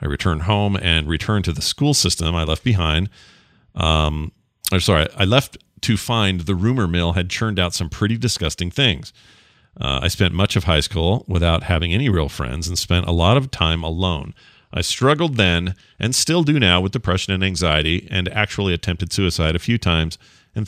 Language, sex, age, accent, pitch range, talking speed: English, male, 40-59, American, 85-110 Hz, 195 wpm